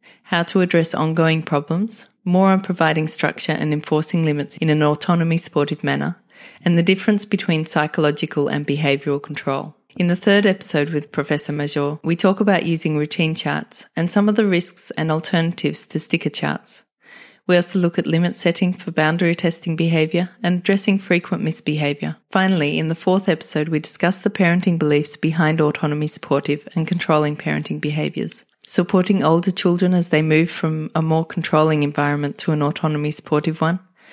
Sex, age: female, 30-49